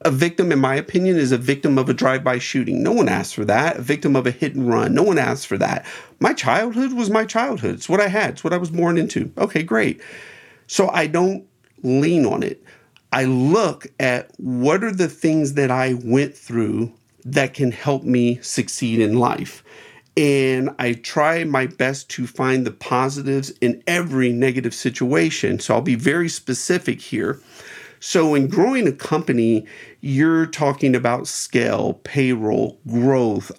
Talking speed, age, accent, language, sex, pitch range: 180 wpm, 40-59, American, English, male, 125-165 Hz